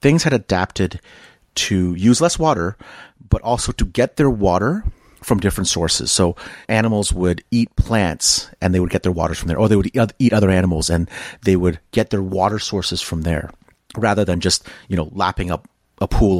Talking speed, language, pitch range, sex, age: 195 wpm, English, 90-115 Hz, male, 30-49